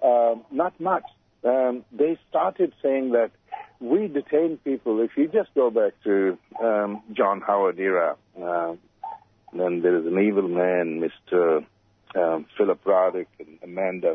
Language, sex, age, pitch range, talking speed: English, male, 60-79, 105-145 Hz, 140 wpm